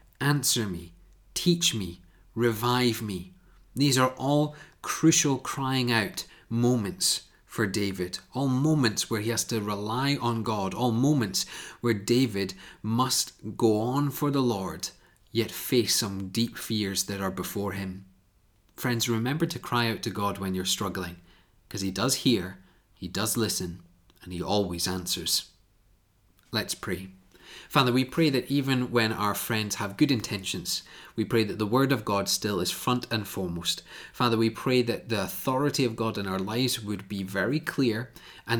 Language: English